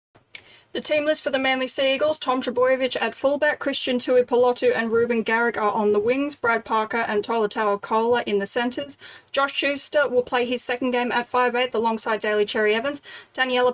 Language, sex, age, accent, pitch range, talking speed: English, female, 10-29, Australian, 205-255 Hz, 190 wpm